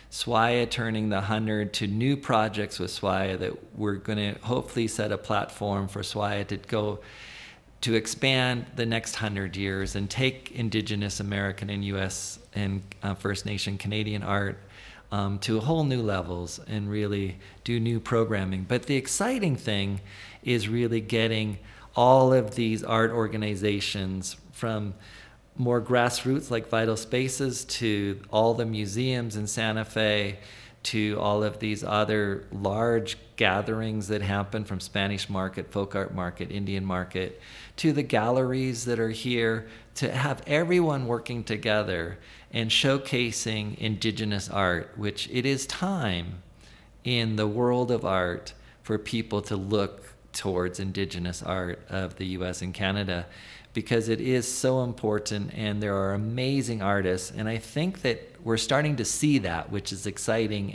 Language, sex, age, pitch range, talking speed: English, male, 40-59, 100-120 Hz, 145 wpm